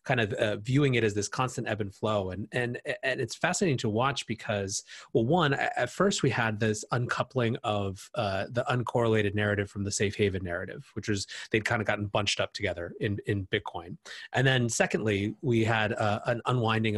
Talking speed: 200 wpm